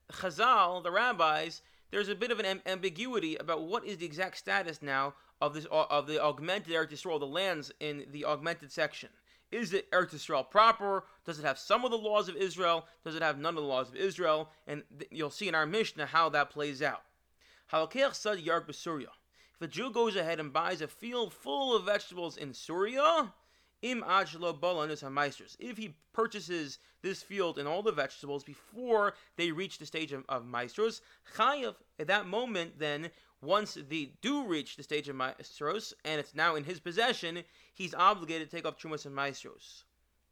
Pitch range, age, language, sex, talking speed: 150-195 Hz, 30-49, English, male, 175 wpm